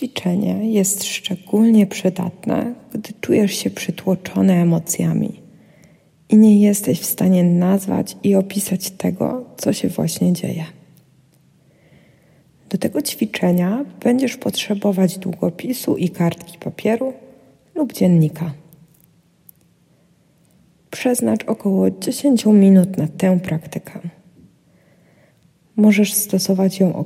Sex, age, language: female, 20-39, Polish